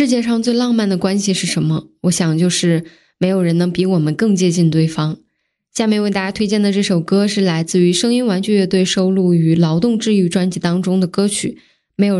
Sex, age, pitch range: female, 10-29, 175-215 Hz